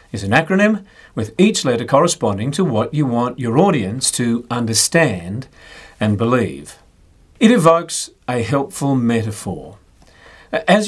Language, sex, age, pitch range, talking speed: English, male, 40-59, 115-160 Hz, 125 wpm